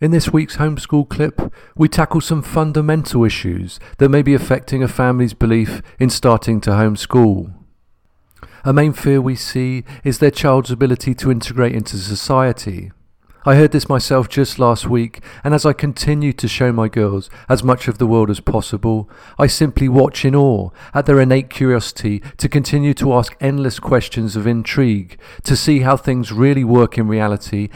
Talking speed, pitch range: 175 wpm, 110-135 Hz